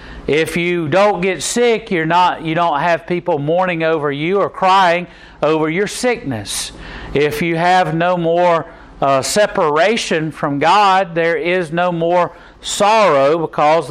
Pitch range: 155-195 Hz